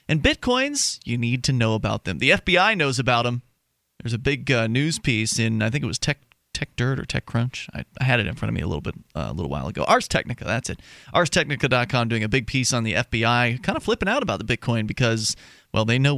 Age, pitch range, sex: 30-49, 115-145 Hz, male